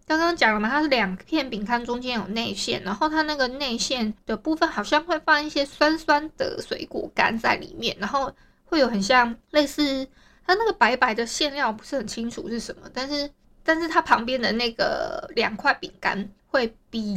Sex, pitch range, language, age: female, 220-290 Hz, Chinese, 20-39